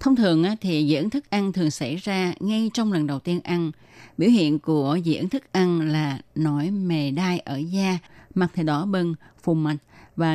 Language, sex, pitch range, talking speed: Vietnamese, female, 150-185 Hz, 195 wpm